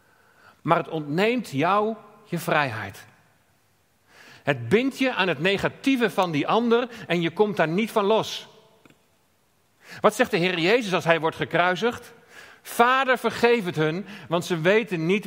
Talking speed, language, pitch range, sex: 155 wpm, Dutch, 135-195 Hz, male